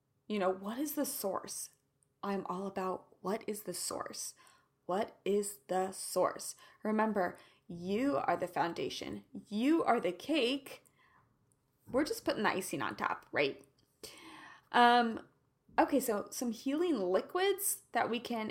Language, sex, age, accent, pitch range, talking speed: English, female, 20-39, American, 185-240 Hz, 140 wpm